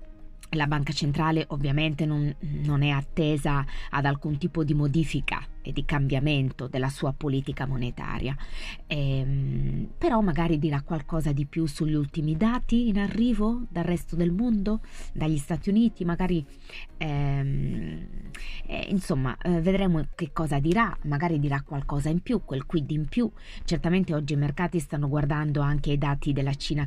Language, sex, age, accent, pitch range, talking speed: Italian, female, 20-39, native, 140-170 Hz, 150 wpm